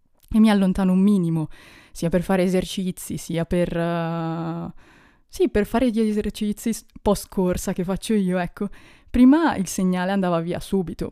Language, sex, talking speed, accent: Italian, female, 150 wpm, native